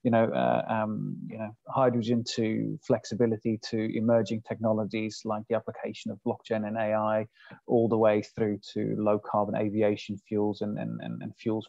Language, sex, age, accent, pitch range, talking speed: English, male, 30-49, British, 110-125 Hz, 160 wpm